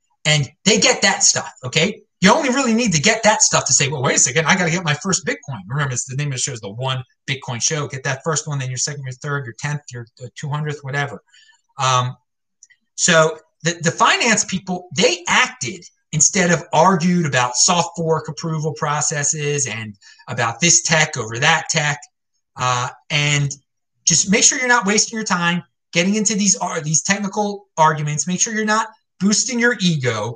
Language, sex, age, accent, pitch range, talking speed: English, male, 30-49, American, 135-185 Hz, 195 wpm